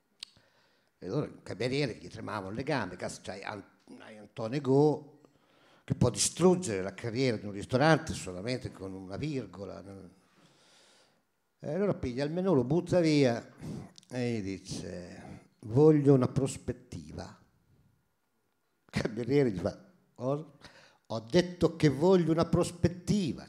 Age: 50-69